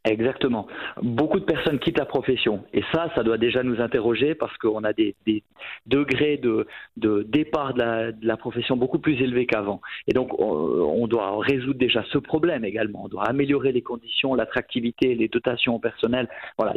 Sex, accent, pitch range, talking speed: male, French, 120-160 Hz, 185 wpm